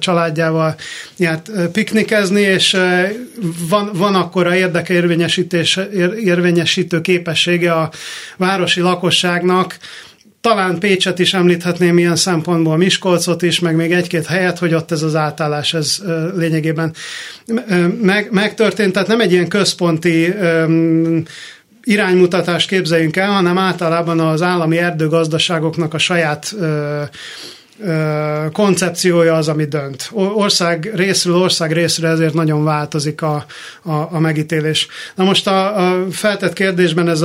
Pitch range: 160-185 Hz